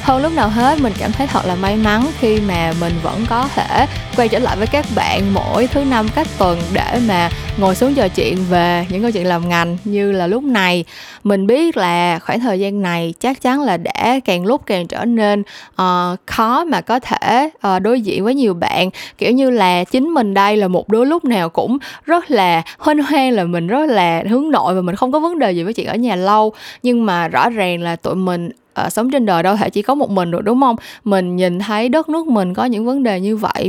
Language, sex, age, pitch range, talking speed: Vietnamese, female, 10-29, 185-250 Hz, 245 wpm